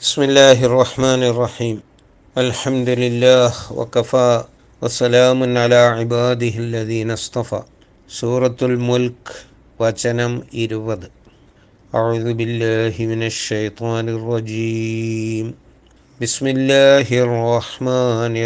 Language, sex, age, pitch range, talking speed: Malayalam, male, 60-79, 115-140 Hz, 80 wpm